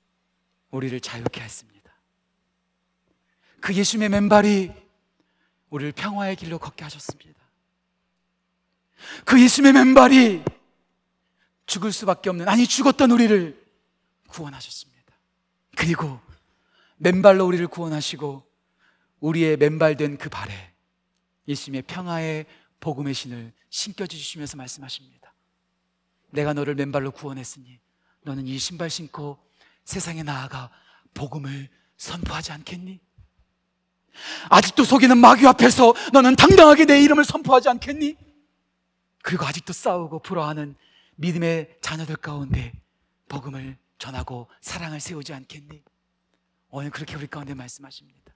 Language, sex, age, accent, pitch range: Korean, male, 40-59, native, 140-195 Hz